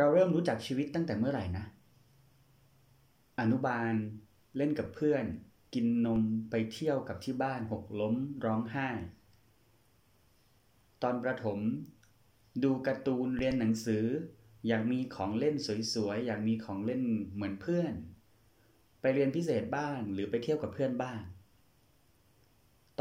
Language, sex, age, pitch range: Thai, male, 30-49, 110-130 Hz